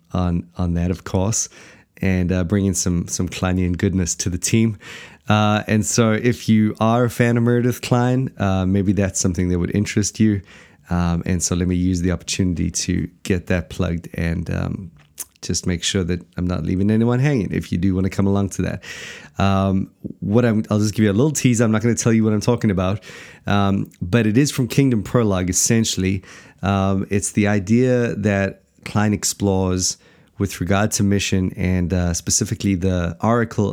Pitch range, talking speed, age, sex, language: 90-110 Hz, 195 wpm, 30-49, male, English